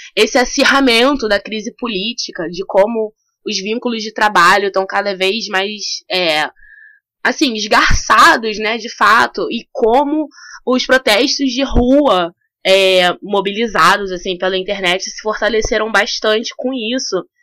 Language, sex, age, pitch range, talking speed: Portuguese, female, 20-39, 190-240 Hz, 125 wpm